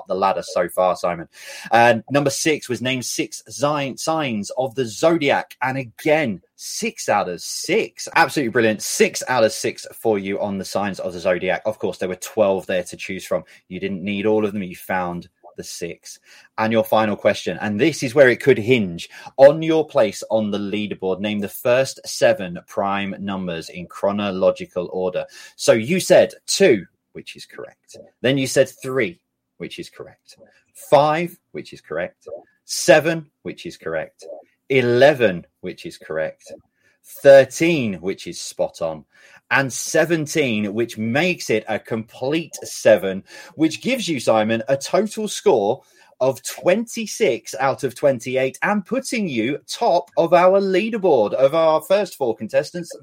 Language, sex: English, male